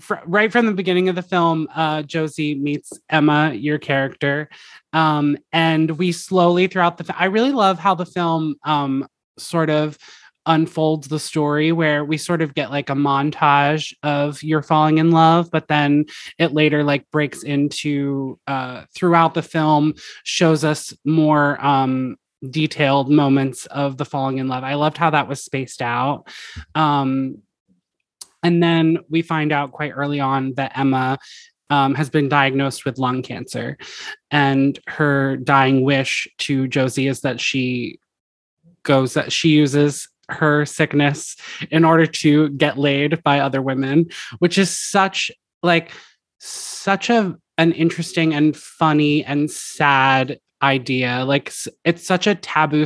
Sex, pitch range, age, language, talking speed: male, 140-165 Hz, 20-39, English, 150 wpm